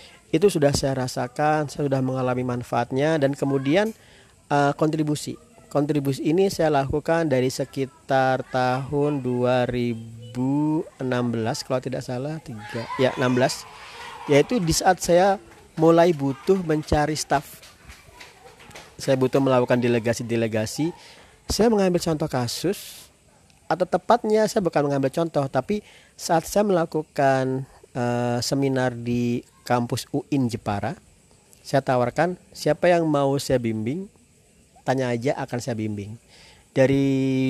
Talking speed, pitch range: 110 wpm, 125-150 Hz